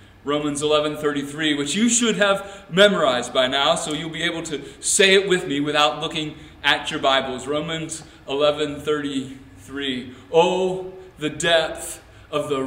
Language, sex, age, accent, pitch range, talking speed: English, male, 40-59, American, 130-165 Hz, 140 wpm